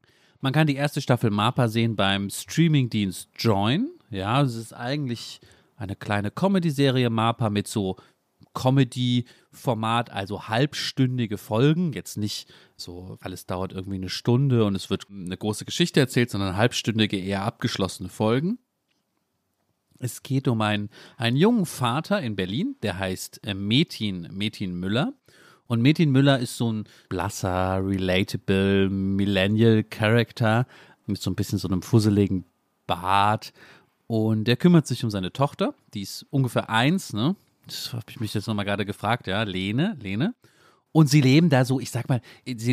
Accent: German